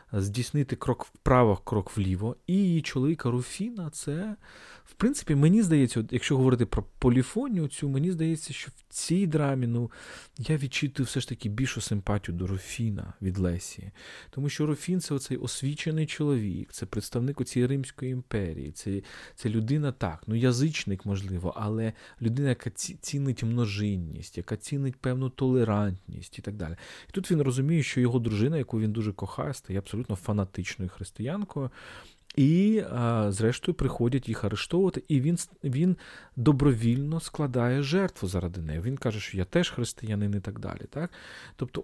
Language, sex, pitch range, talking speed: Ukrainian, male, 105-145 Hz, 155 wpm